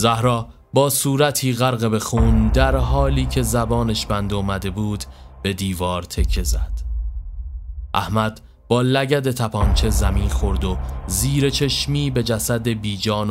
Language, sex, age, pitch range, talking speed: Persian, male, 30-49, 90-125 Hz, 130 wpm